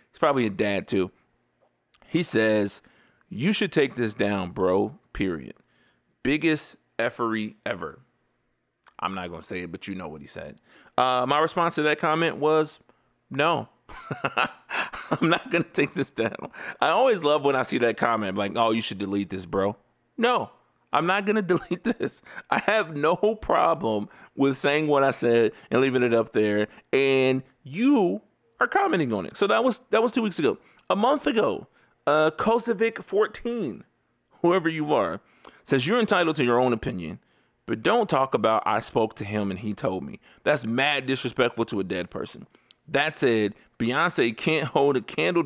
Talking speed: 175 wpm